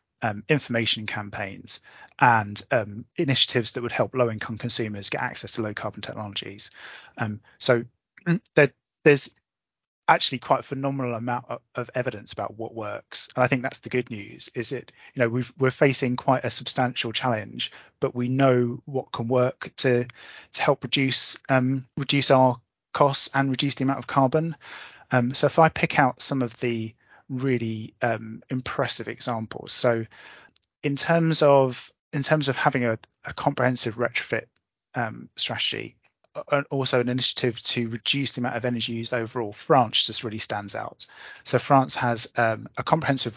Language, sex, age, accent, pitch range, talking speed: English, male, 30-49, British, 115-135 Hz, 165 wpm